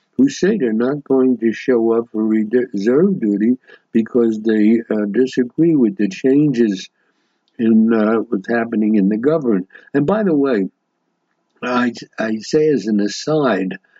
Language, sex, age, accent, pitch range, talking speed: English, male, 60-79, American, 105-130 Hz, 150 wpm